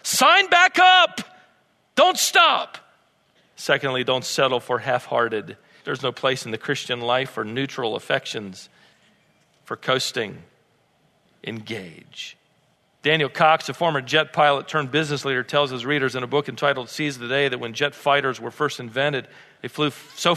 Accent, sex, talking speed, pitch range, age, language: American, male, 155 wpm, 145-215 Hz, 40-59, English